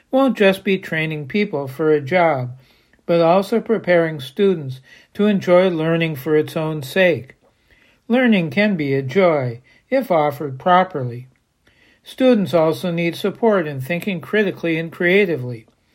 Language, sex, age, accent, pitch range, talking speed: English, male, 60-79, American, 155-195 Hz, 135 wpm